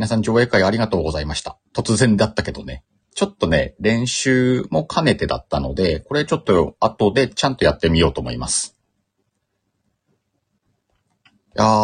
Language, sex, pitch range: Japanese, male, 80-115 Hz